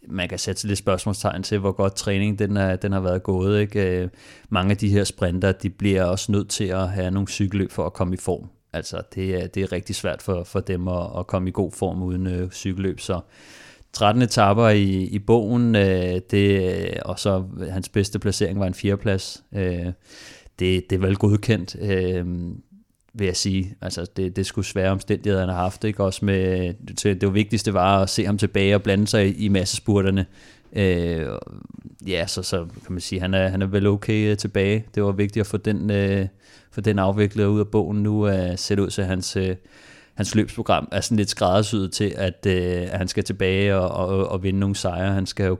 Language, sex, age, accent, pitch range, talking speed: Danish, male, 30-49, native, 90-105 Hz, 205 wpm